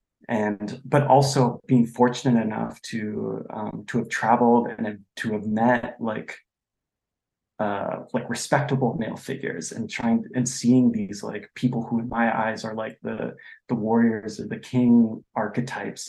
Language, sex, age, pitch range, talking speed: English, male, 20-39, 110-125 Hz, 155 wpm